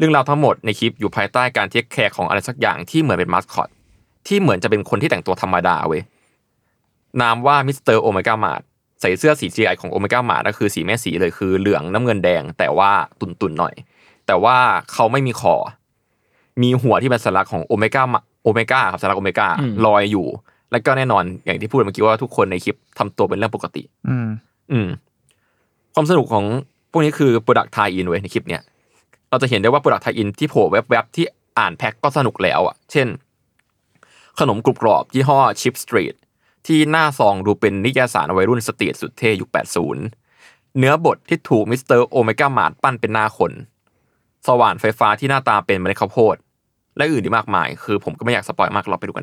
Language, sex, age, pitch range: Thai, male, 20-39, 105-130 Hz